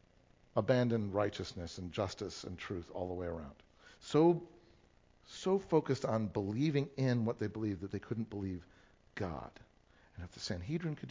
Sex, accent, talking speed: male, American, 155 wpm